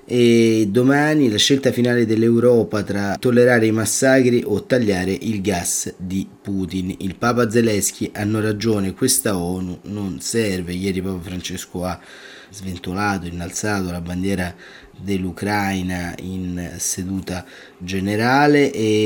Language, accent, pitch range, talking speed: Italian, native, 95-115 Hz, 120 wpm